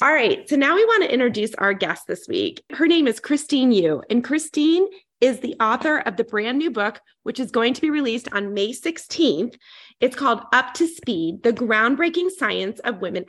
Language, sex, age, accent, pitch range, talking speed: English, female, 30-49, American, 205-265 Hz, 210 wpm